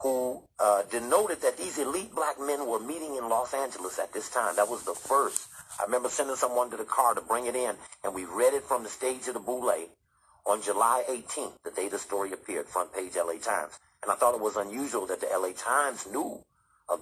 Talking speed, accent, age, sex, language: 230 wpm, American, 50-69, male, English